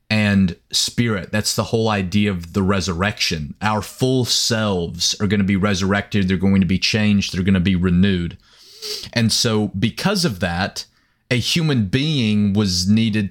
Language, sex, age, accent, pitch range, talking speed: English, male, 30-49, American, 100-120 Hz, 165 wpm